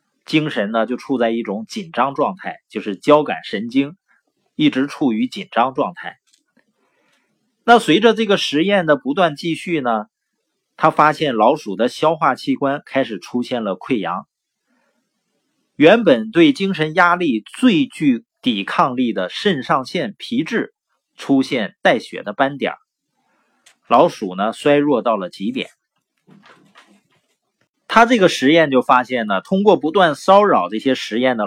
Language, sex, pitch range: Chinese, male, 130-220 Hz